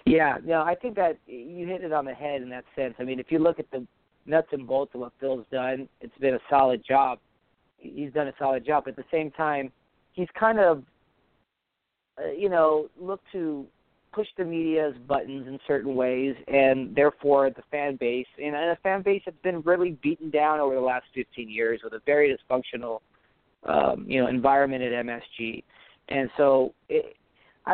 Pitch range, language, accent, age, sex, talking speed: 130-160 Hz, English, American, 40-59, male, 195 wpm